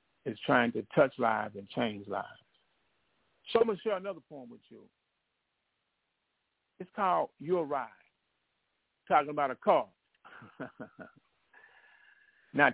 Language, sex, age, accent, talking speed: English, male, 50-69, American, 120 wpm